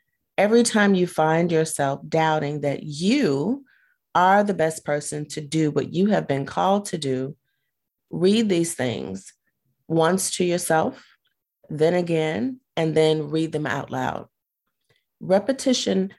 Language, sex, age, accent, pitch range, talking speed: English, female, 30-49, American, 150-190 Hz, 135 wpm